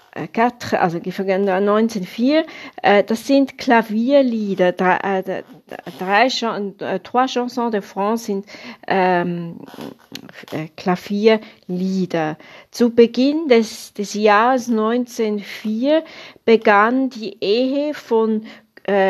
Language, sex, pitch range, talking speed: German, female, 180-225 Hz, 70 wpm